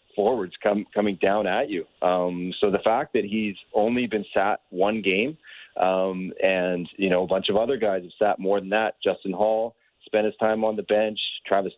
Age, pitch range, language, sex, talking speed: 40-59, 95-115 Hz, English, male, 205 wpm